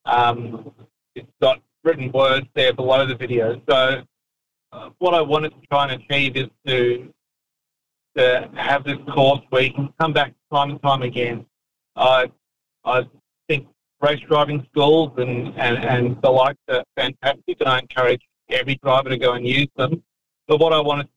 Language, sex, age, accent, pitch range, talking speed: English, male, 40-59, Australian, 130-145 Hz, 170 wpm